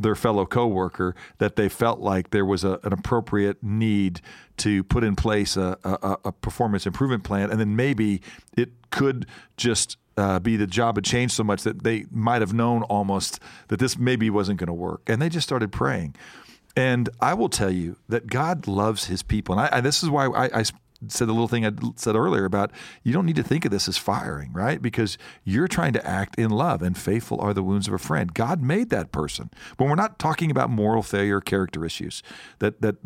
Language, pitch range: English, 95-120 Hz